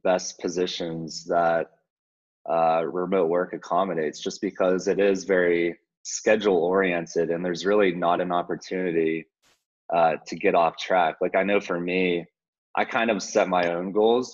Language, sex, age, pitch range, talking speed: English, male, 20-39, 85-95 Hz, 155 wpm